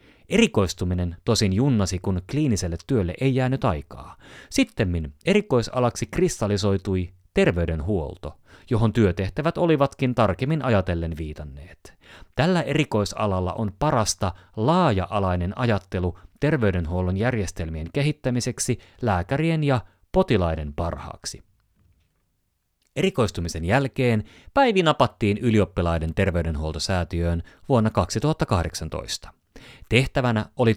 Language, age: Finnish, 30-49